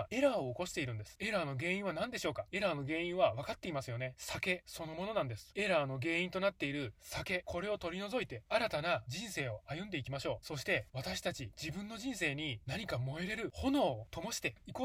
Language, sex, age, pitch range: Japanese, male, 20-39, 140-205 Hz